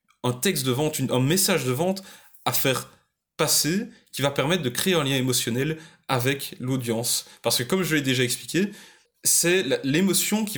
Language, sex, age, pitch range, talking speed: French, male, 20-39, 130-170 Hz, 175 wpm